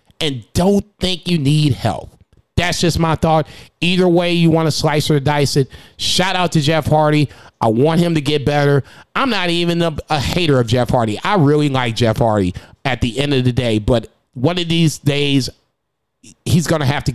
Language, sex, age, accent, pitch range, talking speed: English, male, 30-49, American, 130-155 Hz, 210 wpm